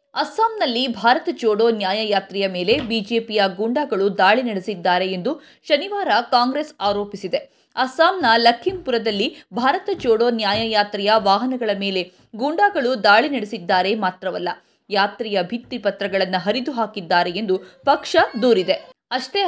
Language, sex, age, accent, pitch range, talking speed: Kannada, female, 20-39, native, 200-255 Hz, 100 wpm